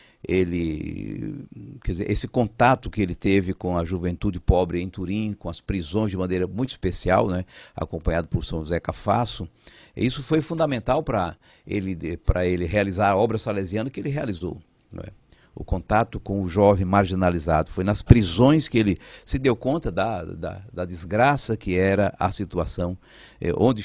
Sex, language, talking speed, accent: male, Portuguese, 165 wpm, Brazilian